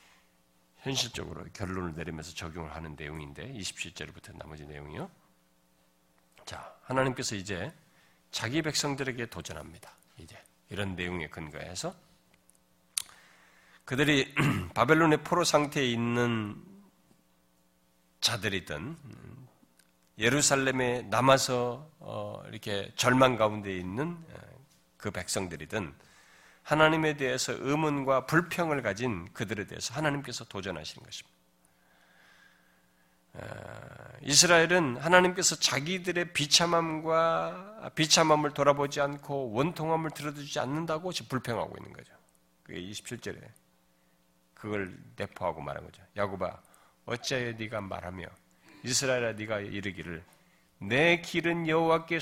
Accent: native